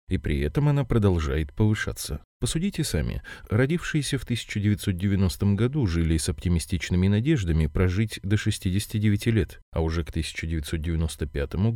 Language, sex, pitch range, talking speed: Russian, male, 85-115 Hz, 125 wpm